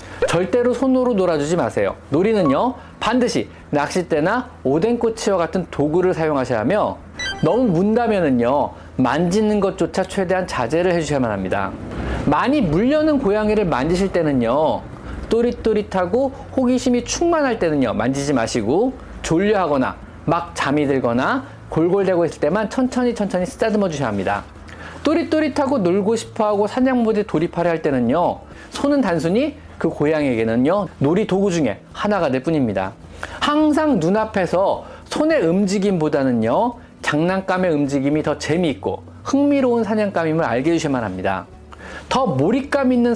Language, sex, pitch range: Korean, male, 150-240 Hz